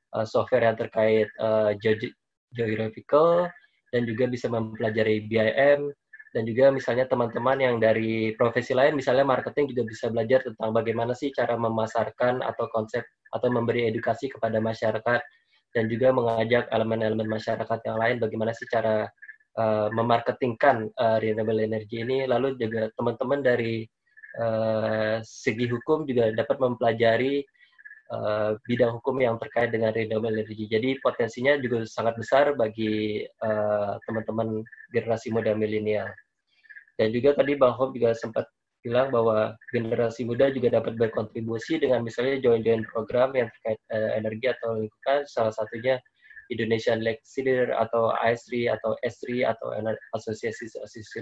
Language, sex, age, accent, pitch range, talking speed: Indonesian, male, 20-39, native, 110-125 Hz, 140 wpm